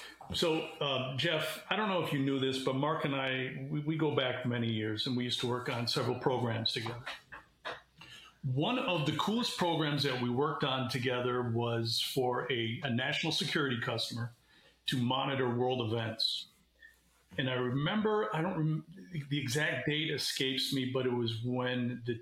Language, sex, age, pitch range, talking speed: English, male, 40-59, 120-150 Hz, 175 wpm